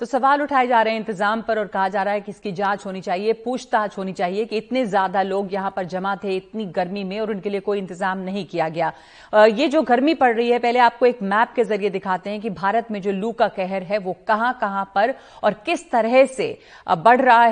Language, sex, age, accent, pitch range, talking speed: Hindi, female, 50-69, native, 195-235 Hz, 245 wpm